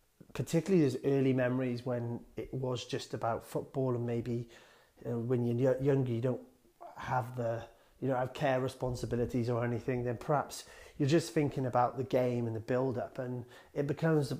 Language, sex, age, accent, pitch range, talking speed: English, male, 30-49, British, 115-130 Hz, 175 wpm